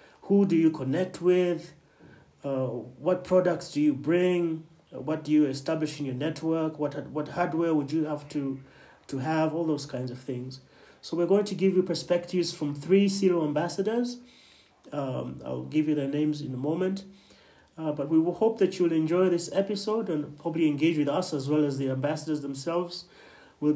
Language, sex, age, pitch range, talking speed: English, male, 30-49, 140-180 Hz, 185 wpm